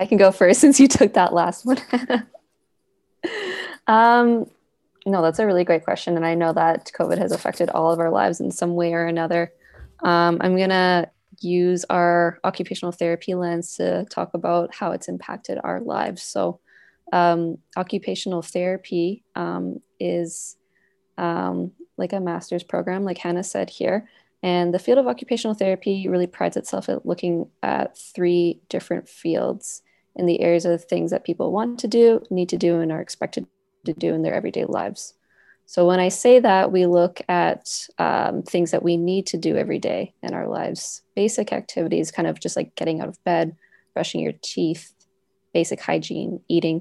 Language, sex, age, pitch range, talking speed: English, female, 20-39, 170-195 Hz, 175 wpm